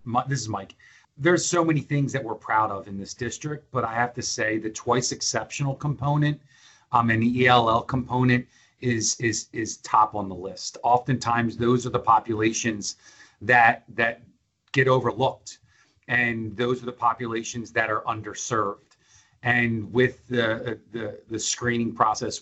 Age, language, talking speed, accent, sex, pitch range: 40-59, English, 160 wpm, American, male, 115-135 Hz